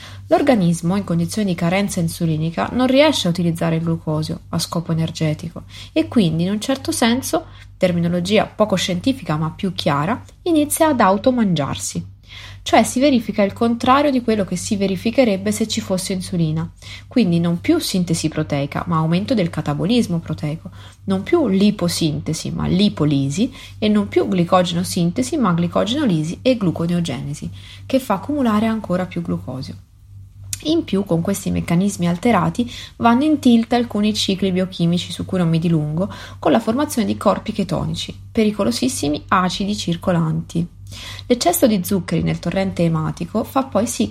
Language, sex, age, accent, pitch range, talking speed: Italian, female, 30-49, native, 160-225 Hz, 145 wpm